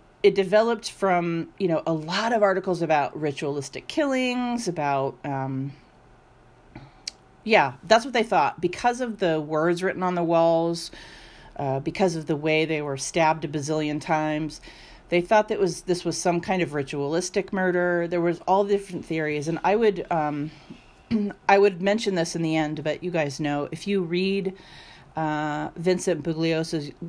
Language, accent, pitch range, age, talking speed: English, American, 150-185 Hz, 40-59, 165 wpm